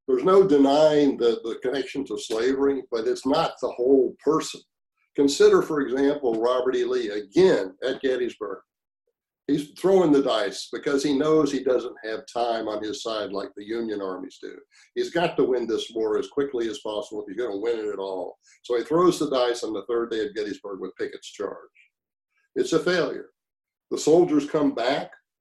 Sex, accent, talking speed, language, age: male, American, 190 wpm, English, 60-79